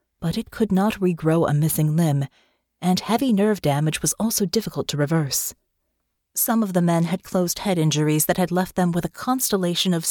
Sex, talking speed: female, 195 wpm